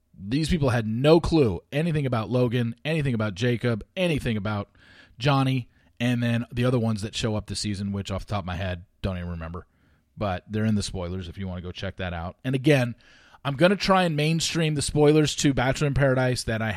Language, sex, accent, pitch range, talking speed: English, male, American, 105-145 Hz, 225 wpm